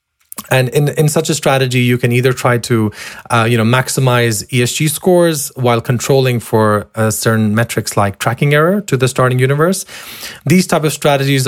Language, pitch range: English, 110-140 Hz